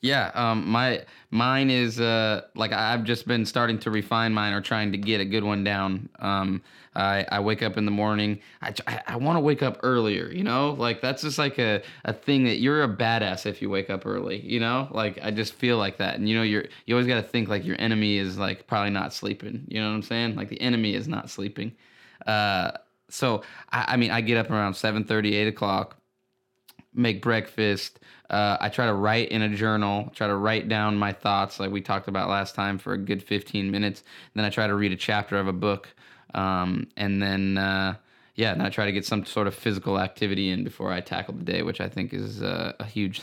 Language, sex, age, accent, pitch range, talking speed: English, male, 20-39, American, 100-115 Hz, 235 wpm